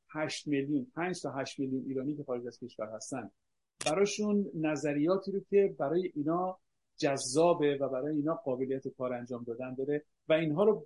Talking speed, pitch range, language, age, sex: 155 wpm, 135-170 Hz, Persian, 50-69, male